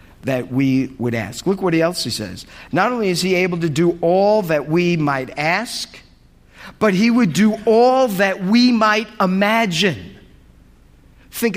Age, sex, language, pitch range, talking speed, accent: 50-69, male, English, 145-215 Hz, 160 wpm, American